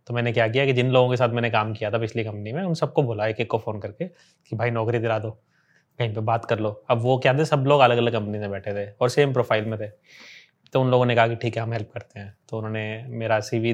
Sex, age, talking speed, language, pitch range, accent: male, 20-39, 290 wpm, Hindi, 110-130 Hz, native